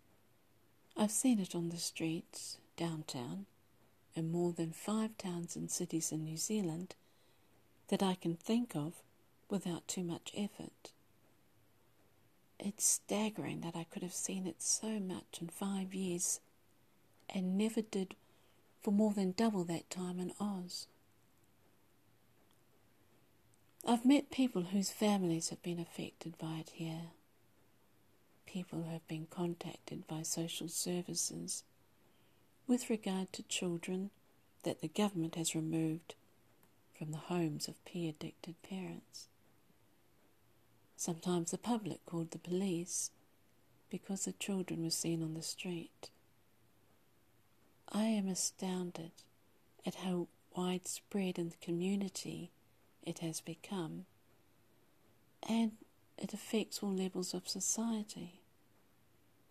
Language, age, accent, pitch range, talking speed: English, 50-69, British, 160-195 Hz, 115 wpm